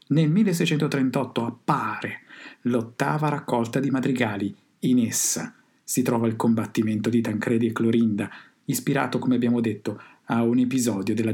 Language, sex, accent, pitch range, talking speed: Italian, male, native, 110-130 Hz, 130 wpm